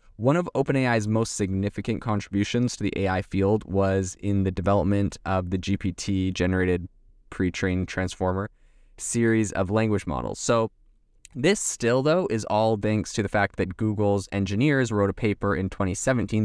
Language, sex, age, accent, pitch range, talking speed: English, male, 20-39, American, 95-110 Hz, 150 wpm